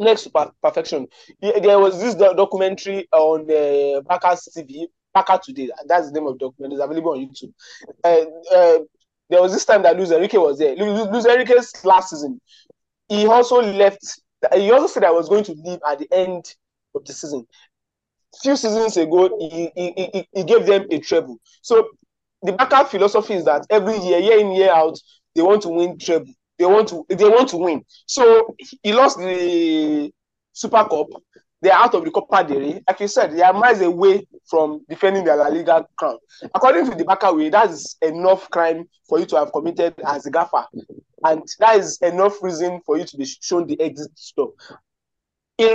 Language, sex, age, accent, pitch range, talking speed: English, male, 20-39, Nigerian, 165-225 Hz, 190 wpm